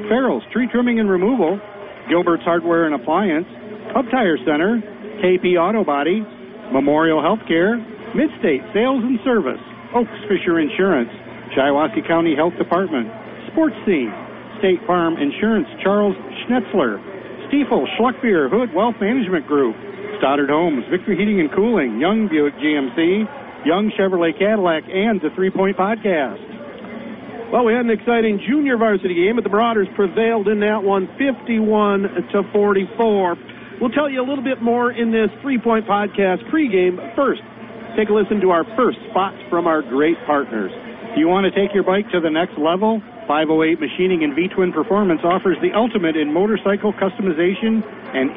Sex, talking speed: male, 150 wpm